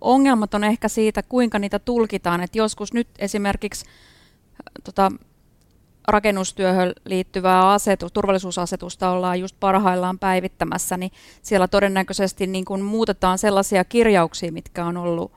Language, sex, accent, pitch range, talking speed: Finnish, female, native, 180-210 Hz, 115 wpm